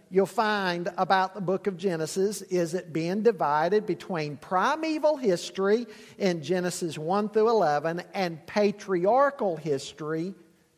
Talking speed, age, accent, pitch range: 115 wpm, 50-69, American, 165-220 Hz